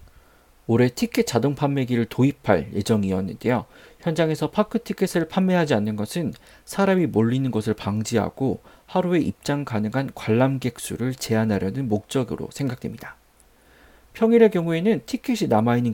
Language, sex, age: Korean, male, 40-59